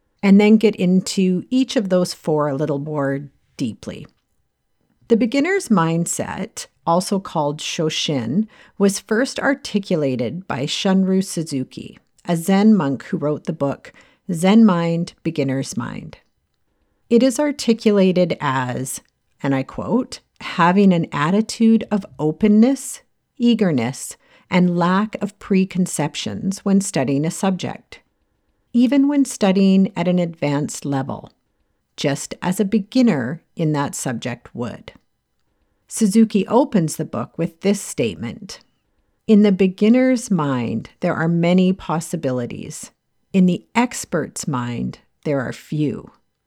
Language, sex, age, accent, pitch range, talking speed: English, female, 50-69, American, 155-215 Hz, 120 wpm